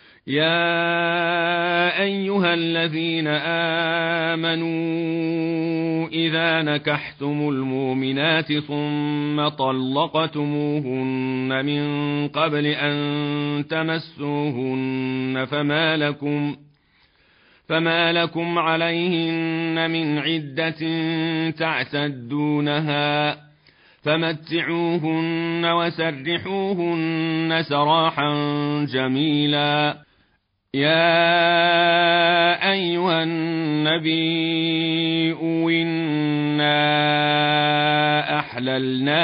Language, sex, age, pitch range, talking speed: Arabic, male, 40-59, 145-165 Hz, 45 wpm